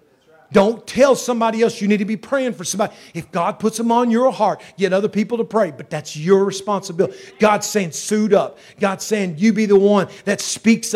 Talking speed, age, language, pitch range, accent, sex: 215 wpm, 40-59, English, 175-235 Hz, American, male